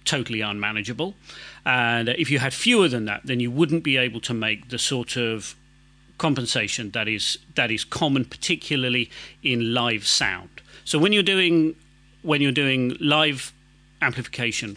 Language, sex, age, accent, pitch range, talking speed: English, male, 40-59, British, 115-150 Hz, 155 wpm